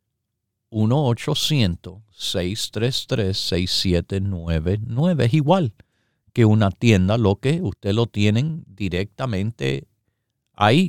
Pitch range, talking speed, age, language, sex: 100-125 Hz, 70 wpm, 50-69, Spanish, male